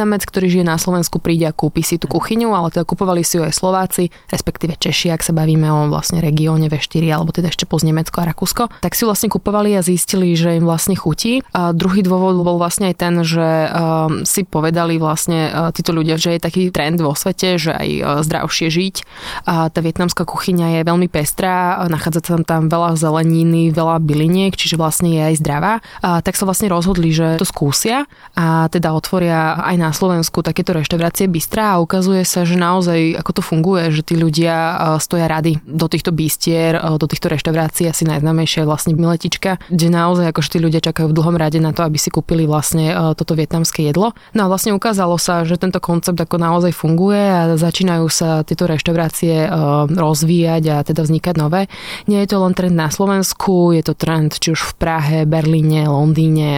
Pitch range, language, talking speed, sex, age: 160-180 Hz, Slovak, 195 wpm, female, 20-39